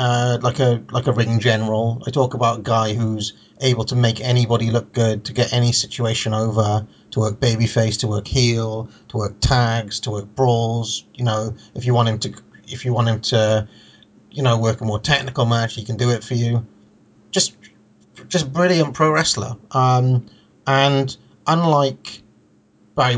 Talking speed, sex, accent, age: 185 wpm, male, British, 30-49